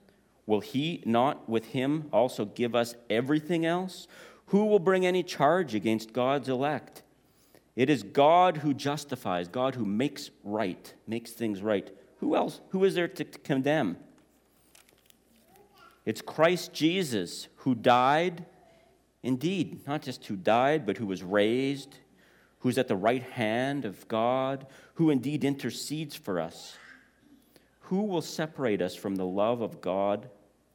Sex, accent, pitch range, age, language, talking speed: male, American, 105-135 Hz, 40-59, English, 140 wpm